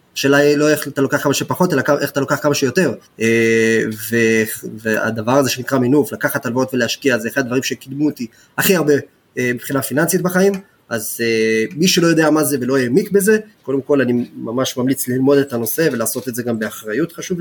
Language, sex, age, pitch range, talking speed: Hebrew, male, 20-39, 120-155 Hz, 205 wpm